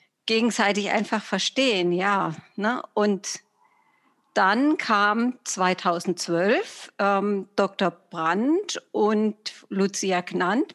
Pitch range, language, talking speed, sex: 180-235 Hz, German, 75 wpm, female